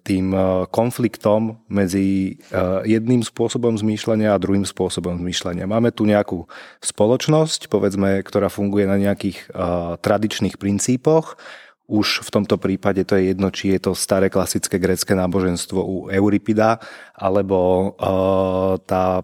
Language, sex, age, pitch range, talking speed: Slovak, male, 30-49, 95-110 Hz, 120 wpm